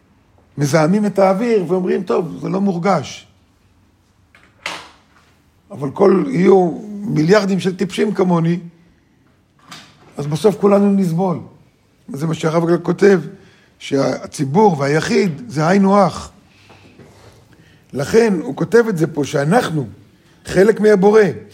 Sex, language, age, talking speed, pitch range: male, Hebrew, 50-69, 105 wpm, 140-200 Hz